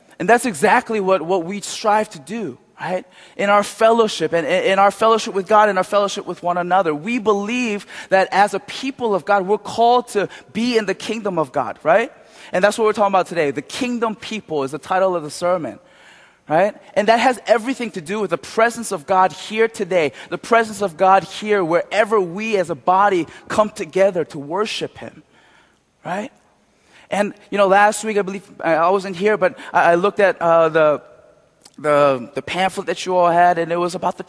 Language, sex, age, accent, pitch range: Korean, male, 20-39, American, 175-210 Hz